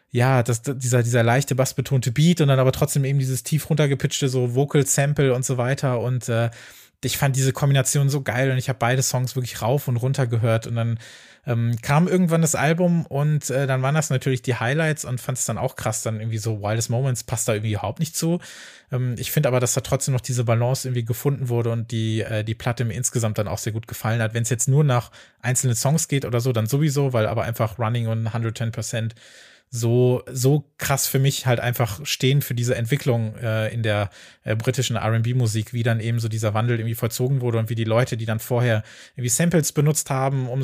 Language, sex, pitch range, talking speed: German, male, 115-135 Hz, 230 wpm